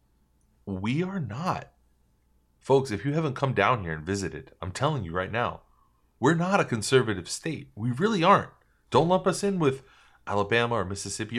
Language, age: English, 30-49